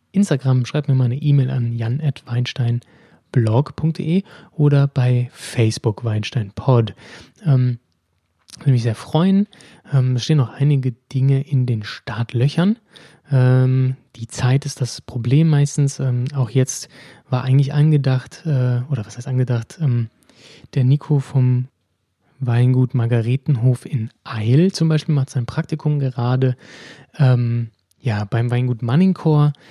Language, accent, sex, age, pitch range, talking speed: German, German, male, 20-39, 120-145 Hz, 130 wpm